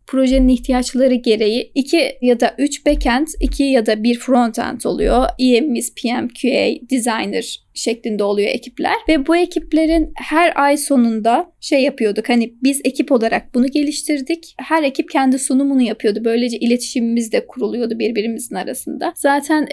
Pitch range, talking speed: 250-310 Hz, 145 wpm